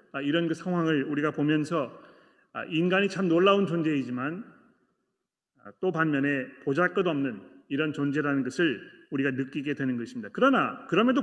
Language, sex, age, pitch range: Korean, male, 30-49, 150-185 Hz